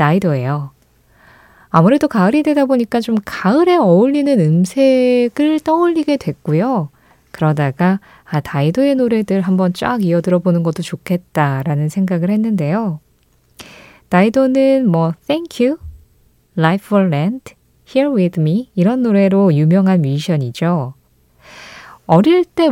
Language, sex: Korean, female